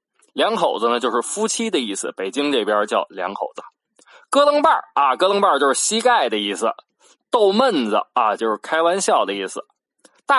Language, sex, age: Chinese, male, 20-39